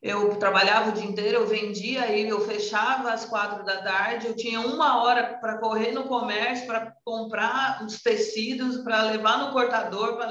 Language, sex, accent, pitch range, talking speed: Portuguese, female, Brazilian, 185-230 Hz, 175 wpm